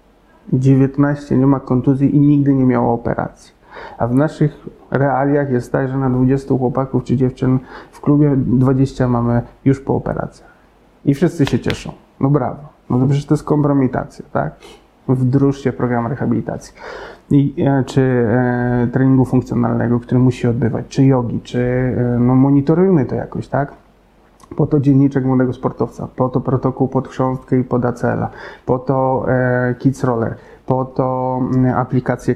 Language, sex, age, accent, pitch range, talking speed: Polish, male, 30-49, native, 125-140 Hz, 150 wpm